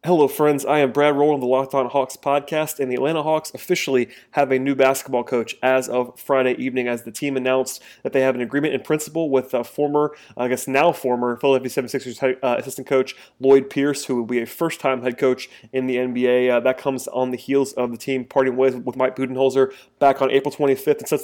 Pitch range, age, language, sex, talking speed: 125-135 Hz, 20-39, English, male, 235 wpm